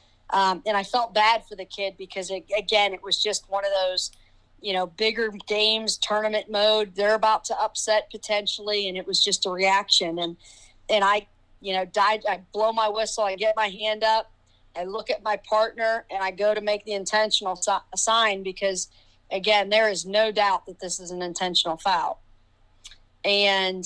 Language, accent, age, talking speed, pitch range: English, American, 40-59, 190 wpm, 185-215 Hz